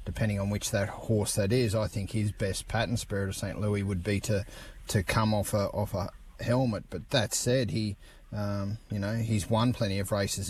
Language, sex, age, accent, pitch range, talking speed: English, male, 30-49, Australian, 100-115 Hz, 215 wpm